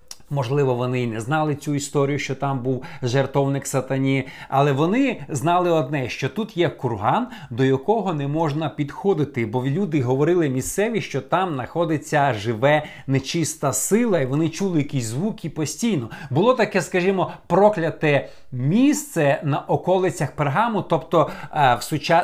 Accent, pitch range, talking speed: native, 140-190 Hz, 145 wpm